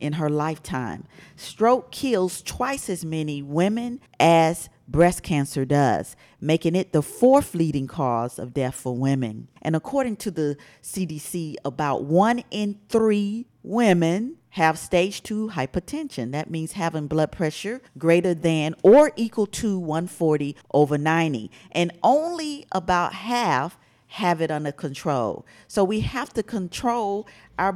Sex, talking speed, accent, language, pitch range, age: female, 140 wpm, American, English, 140-190 Hz, 40-59